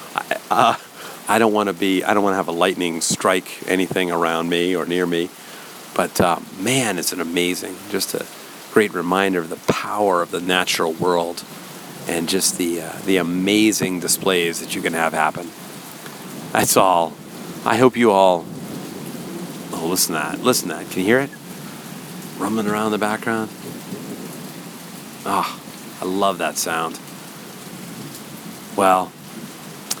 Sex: male